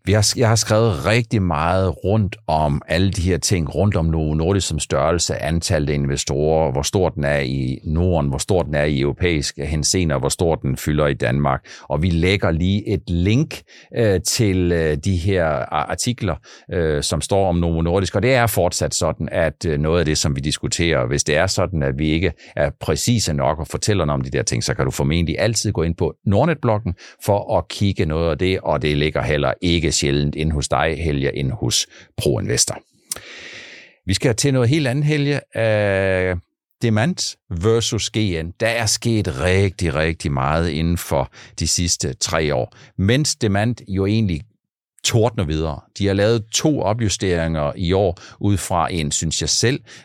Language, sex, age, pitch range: Danish, male, 60-79, 80-110 Hz